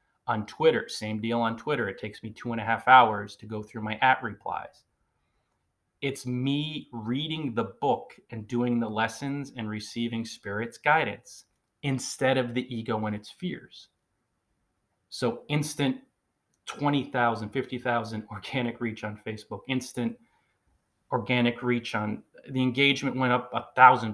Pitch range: 115-140 Hz